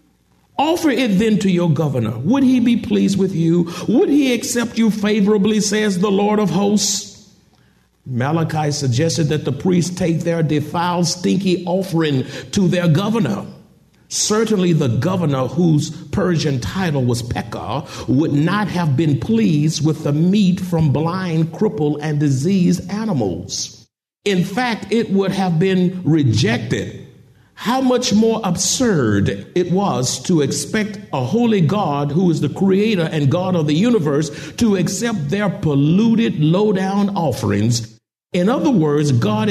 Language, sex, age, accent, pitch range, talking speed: English, male, 50-69, American, 140-200 Hz, 145 wpm